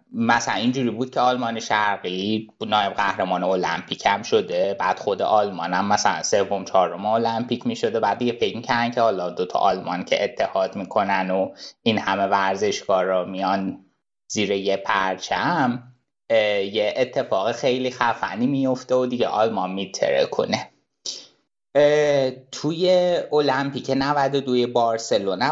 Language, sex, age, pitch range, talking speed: Persian, male, 20-39, 100-140 Hz, 130 wpm